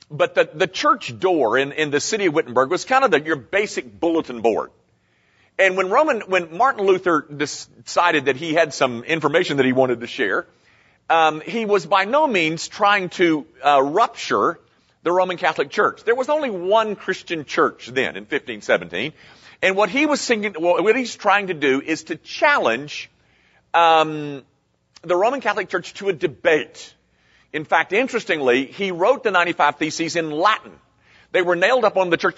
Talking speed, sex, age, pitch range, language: 180 wpm, male, 50-69, 160-210 Hz, English